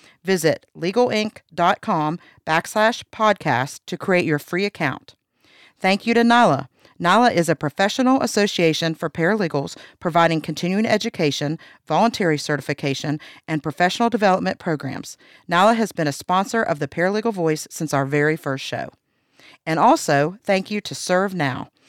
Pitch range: 150-205 Hz